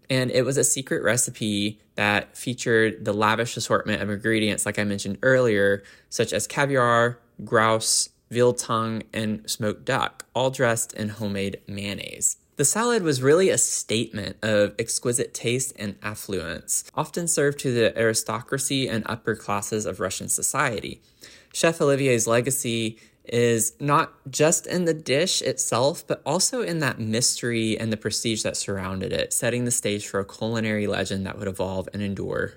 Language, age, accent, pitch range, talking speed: English, 20-39, American, 105-130 Hz, 160 wpm